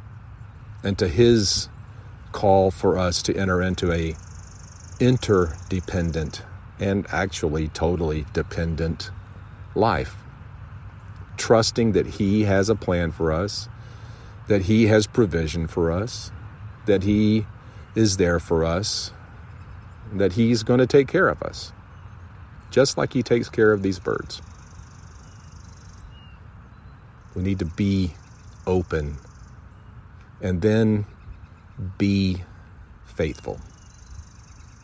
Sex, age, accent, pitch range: male, 50-69, American, 85-110 Hz